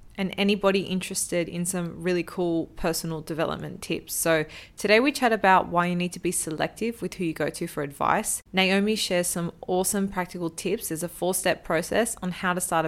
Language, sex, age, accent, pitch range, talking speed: English, female, 20-39, Australian, 160-185 Hz, 195 wpm